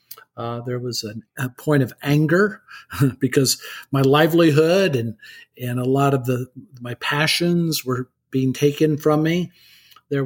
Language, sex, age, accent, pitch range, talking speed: English, male, 50-69, American, 130-155 Hz, 145 wpm